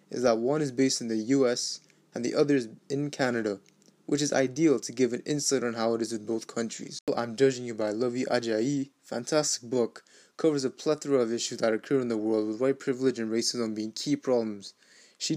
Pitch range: 115-135 Hz